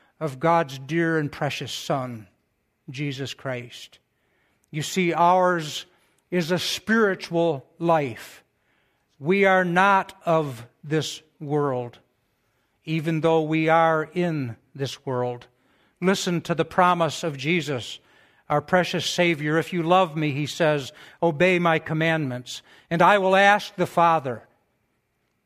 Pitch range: 145-185 Hz